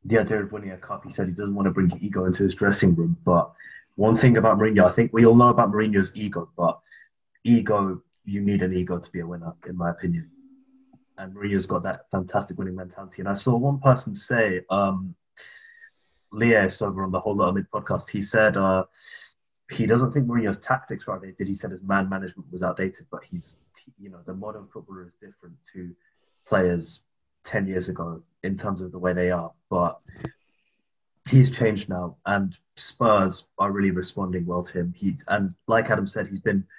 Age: 30-49